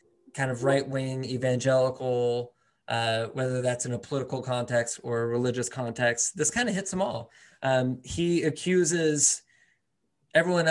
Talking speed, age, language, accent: 140 wpm, 20-39, English, American